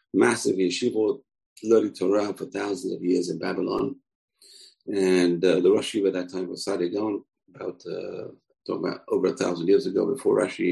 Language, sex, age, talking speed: English, male, 40-59, 170 wpm